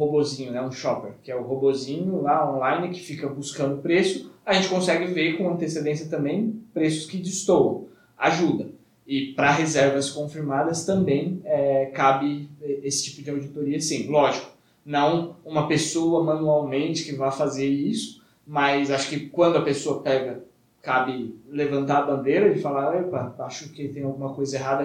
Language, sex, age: Portuguese, male, 20-39